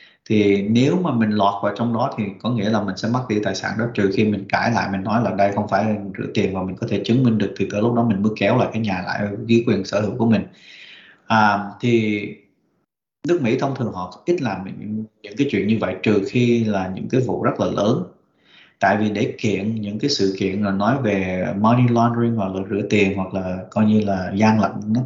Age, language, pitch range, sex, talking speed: 20-39, Vietnamese, 100-120 Hz, male, 250 wpm